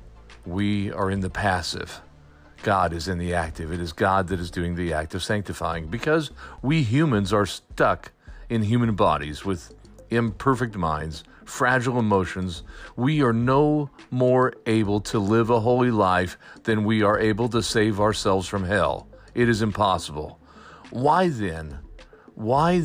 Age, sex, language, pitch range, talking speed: 40-59, male, English, 95-130 Hz, 150 wpm